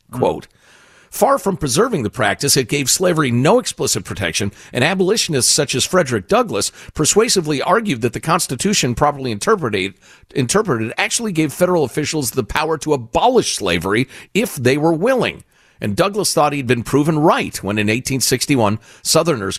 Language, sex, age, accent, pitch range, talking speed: English, male, 50-69, American, 110-160 Hz, 150 wpm